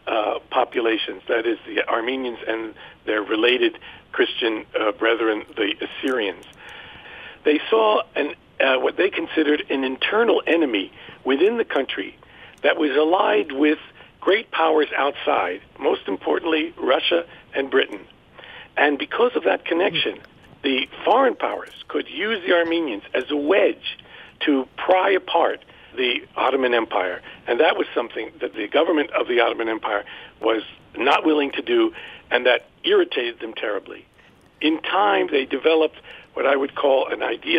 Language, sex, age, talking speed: English, male, 50-69, 140 wpm